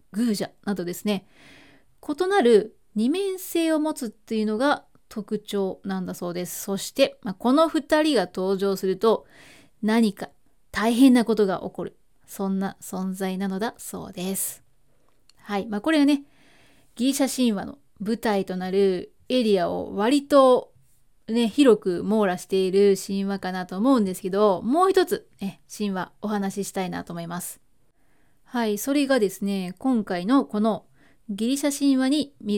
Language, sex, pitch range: Japanese, female, 195-255 Hz